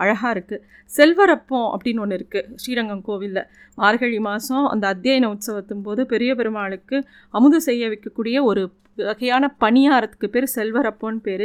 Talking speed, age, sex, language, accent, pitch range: 125 wpm, 30-49, female, Tamil, native, 210-260 Hz